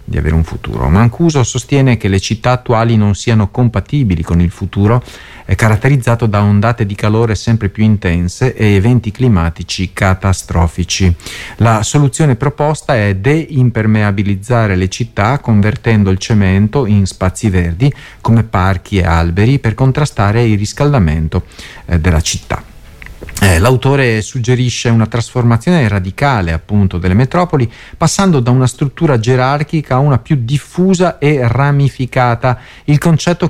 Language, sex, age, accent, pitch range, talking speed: Italian, male, 40-59, native, 105-140 Hz, 130 wpm